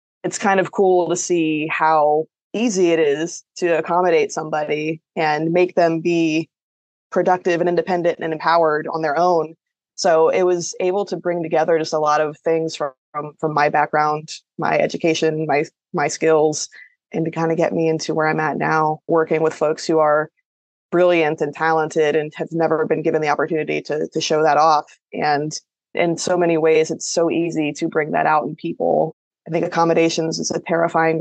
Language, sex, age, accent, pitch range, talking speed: English, female, 20-39, American, 155-170 Hz, 190 wpm